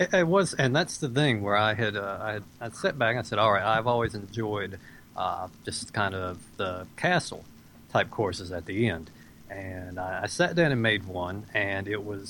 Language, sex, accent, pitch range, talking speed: English, male, American, 95-115 Hz, 215 wpm